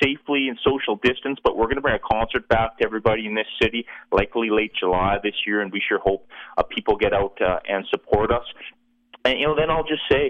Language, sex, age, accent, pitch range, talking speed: English, male, 30-49, American, 100-135 Hz, 240 wpm